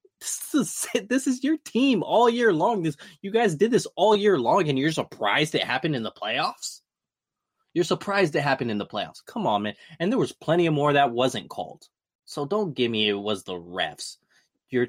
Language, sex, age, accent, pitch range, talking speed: English, male, 20-39, American, 95-150 Hz, 215 wpm